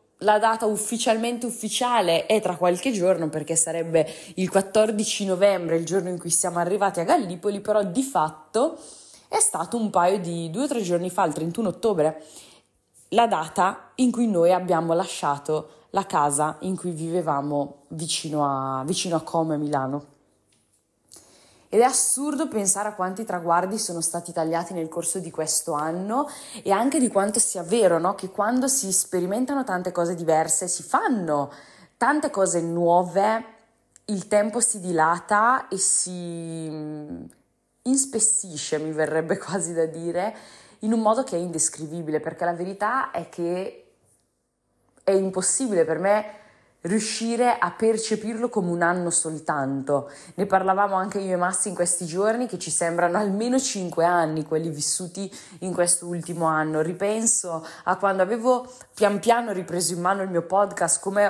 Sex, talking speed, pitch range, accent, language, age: female, 150 wpm, 165-210 Hz, native, Italian, 20-39